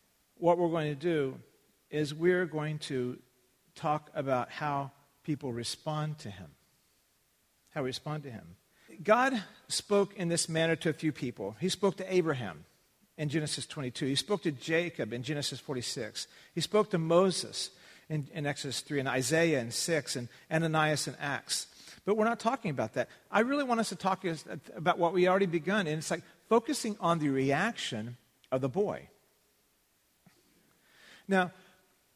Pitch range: 150-215 Hz